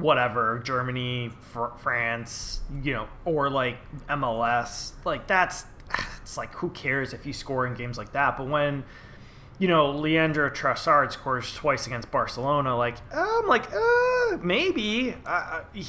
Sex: male